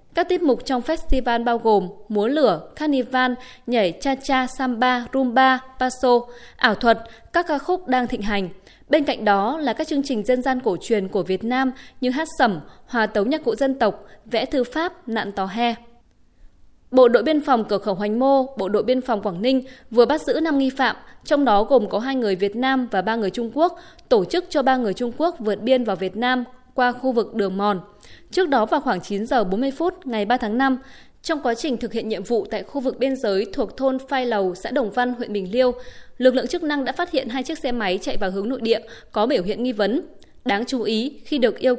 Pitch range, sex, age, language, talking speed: 215-270 Hz, female, 20-39, Vietnamese, 235 wpm